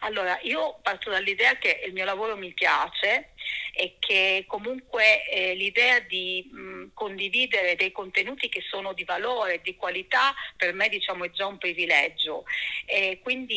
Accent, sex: native, female